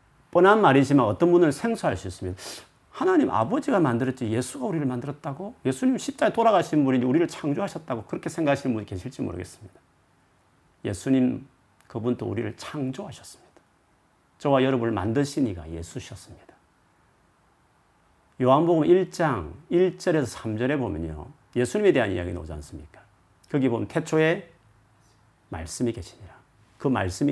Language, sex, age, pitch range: Korean, male, 40-59, 105-150 Hz